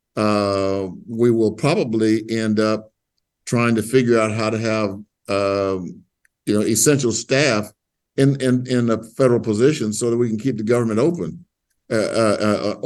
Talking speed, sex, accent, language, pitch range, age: 165 wpm, male, American, English, 105-120 Hz, 50-69